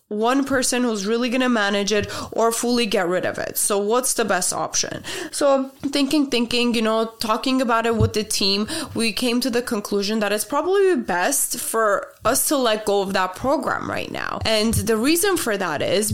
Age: 20-39